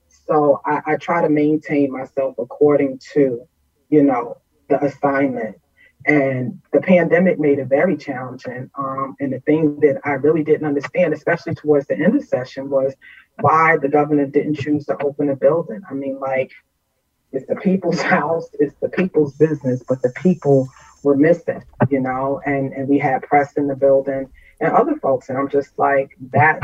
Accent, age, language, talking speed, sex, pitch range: American, 30-49, English, 180 wpm, female, 135-150 Hz